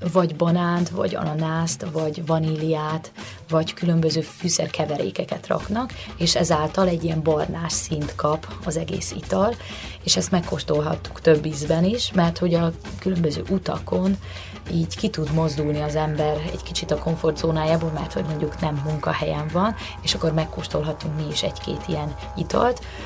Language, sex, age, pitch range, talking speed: Hungarian, female, 20-39, 155-175 Hz, 145 wpm